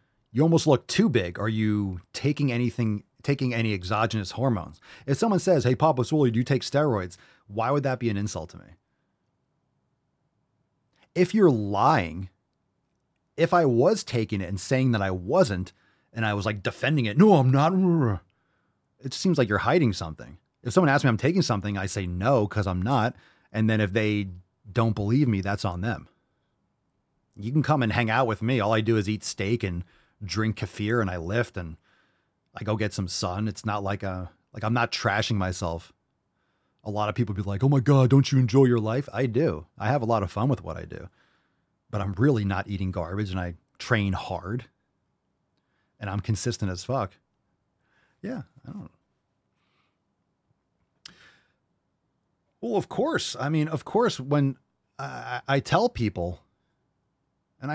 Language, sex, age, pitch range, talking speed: English, male, 30-49, 100-135 Hz, 180 wpm